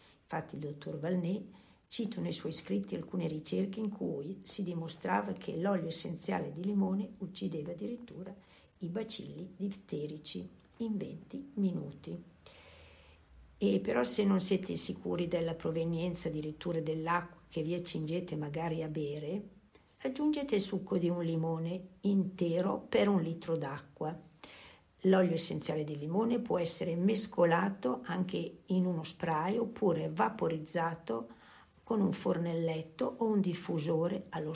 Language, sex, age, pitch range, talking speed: Italian, female, 60-79, 160-200 Hz, 130 wpm